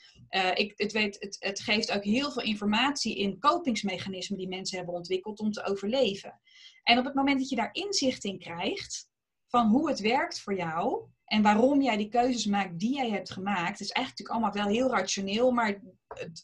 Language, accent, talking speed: Dutch, Dutch, 200 wpm